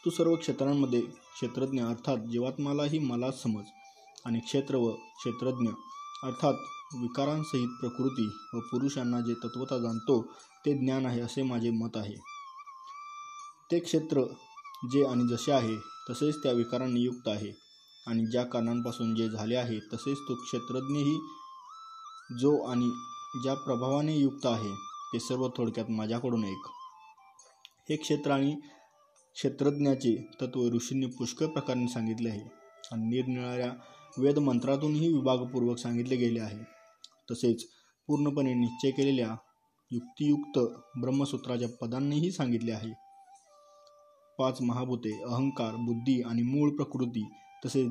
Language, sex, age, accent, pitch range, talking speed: Marathi, male, 20-39, native, 120-150 Hz, 115 wpm